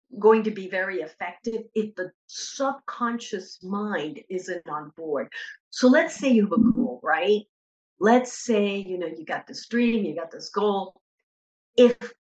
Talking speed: 160 wpm